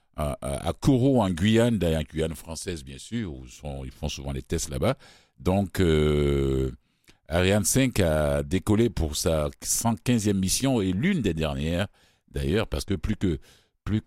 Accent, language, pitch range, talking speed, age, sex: French, French, 80-110 Hz, 160 wpm, 60-79, male